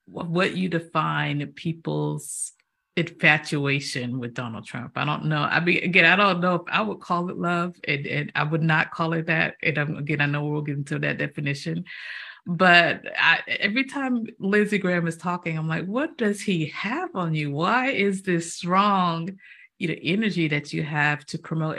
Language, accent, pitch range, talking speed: English, American, 140-170 Hz, 180 wpm